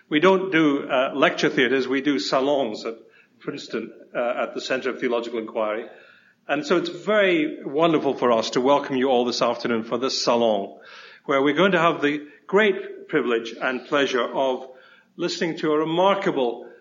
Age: 50-69